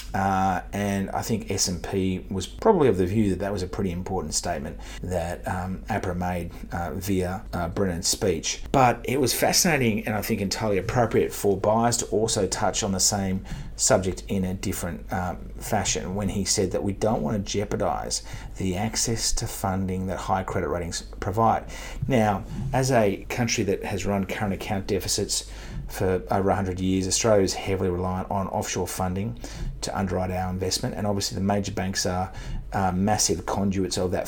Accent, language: Australian, English